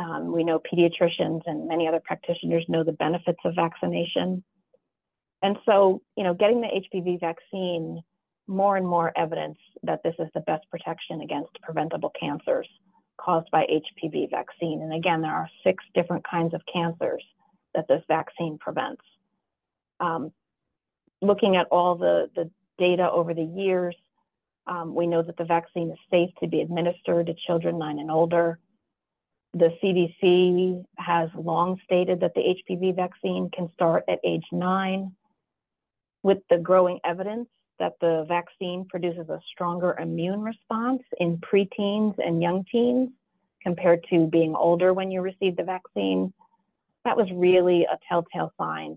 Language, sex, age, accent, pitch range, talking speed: English, female, 30-49, American, 165-190 Hz, 150 wpm